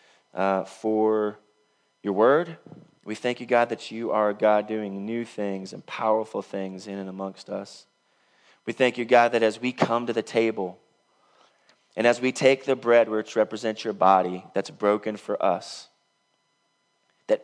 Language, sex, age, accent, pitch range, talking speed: English, male, 30-49, American, 105-125 Hz, 170 wpm